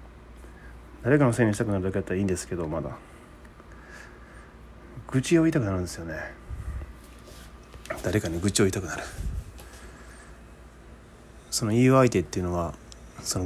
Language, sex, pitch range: Japanese, male, 75-105 Hz